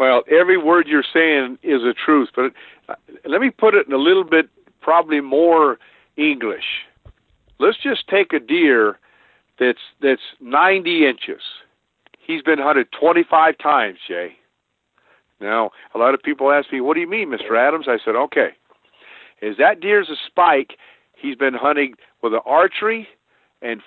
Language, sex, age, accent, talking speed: English, male, 50-69, American, 160 wpm